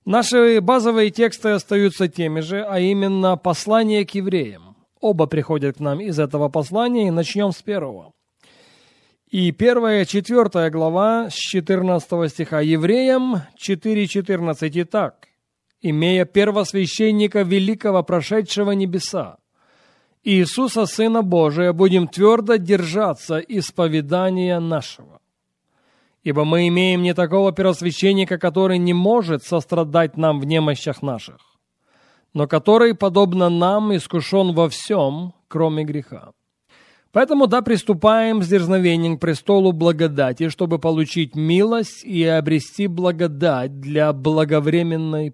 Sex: male